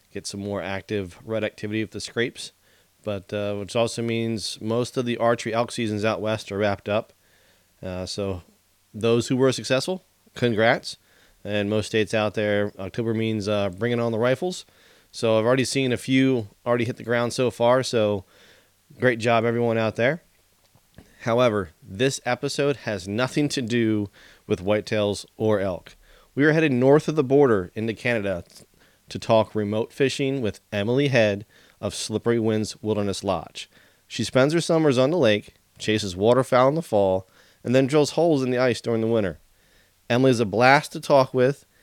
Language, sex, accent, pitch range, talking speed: English, male, American, 105-130 Hz, 175 wpm